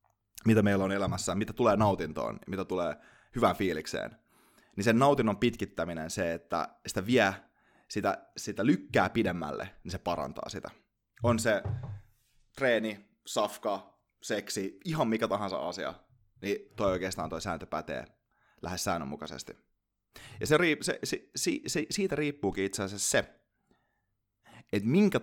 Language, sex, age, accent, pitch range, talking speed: Finnish, male, 30-49, native, 100-120 Hz, 140 wpm